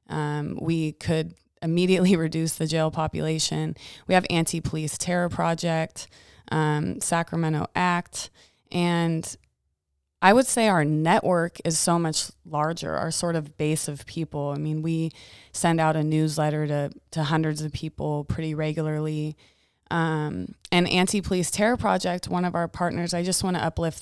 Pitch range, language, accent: 155-170 Hz, English, American